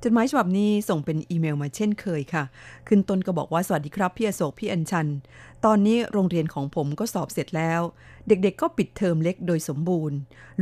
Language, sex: Thai, female